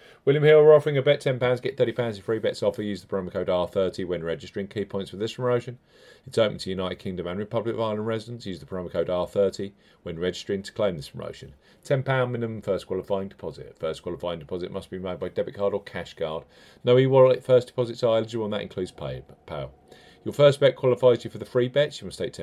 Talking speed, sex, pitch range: 245 wpm, male, 95-125 Hz